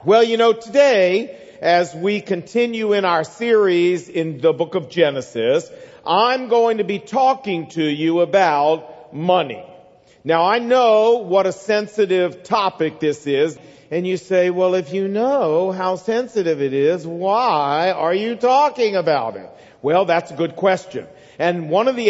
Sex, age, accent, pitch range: male, 50-69, American, 175-225 Hz